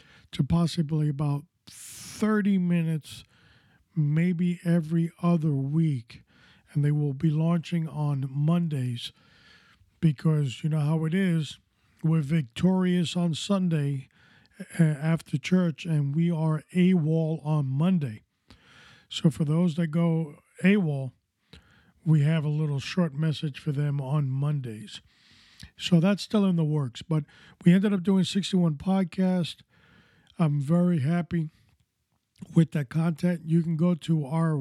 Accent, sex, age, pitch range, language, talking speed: American, male, 50-69, 145-175 Hz, English, 130 wpm